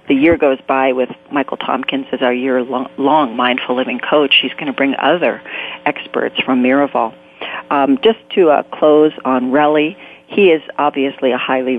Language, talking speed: English, 170 wpm